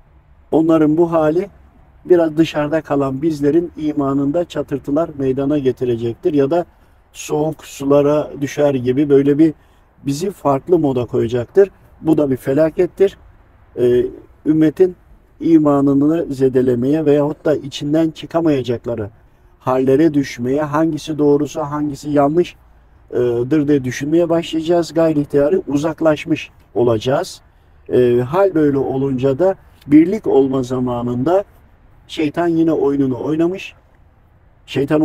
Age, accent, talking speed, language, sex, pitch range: 50-69, native, 100 wpm, Turkish, male, 130-160 Hz